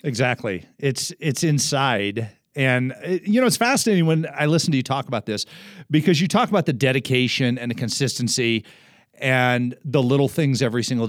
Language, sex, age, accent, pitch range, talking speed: English, male, 40-59, American, 125-190 Hz, 175 wpm